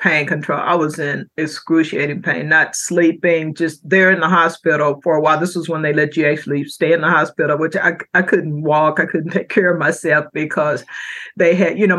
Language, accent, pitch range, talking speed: English, American, 150-170 Hz, 220 wpm